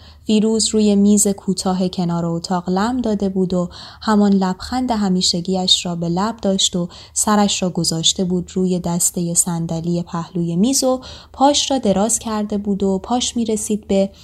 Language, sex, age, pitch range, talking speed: Persian, female, 20-39, 175-220 Hz, 160 wpm